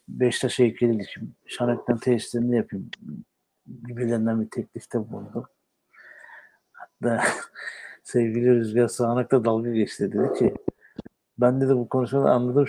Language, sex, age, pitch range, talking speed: Turkish, male, 60-79, 120-140 Hz, 110 wpm